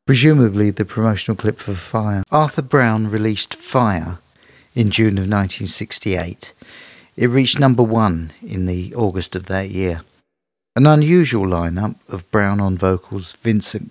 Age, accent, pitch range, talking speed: 50-69, British, 95-115 Hz, 140 wpm